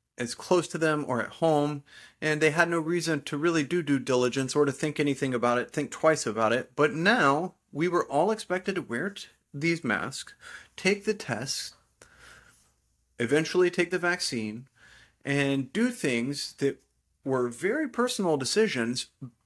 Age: 30-49